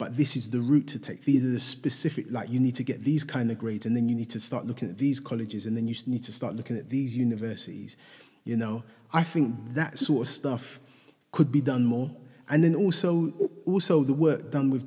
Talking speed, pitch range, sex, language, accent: 240 wpm, 120-145 Hz, male, English, British